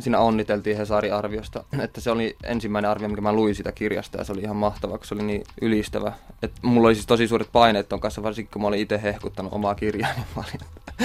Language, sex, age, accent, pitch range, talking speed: Finnish, male, 20-39, native, 100-110 Hz, 225 wpm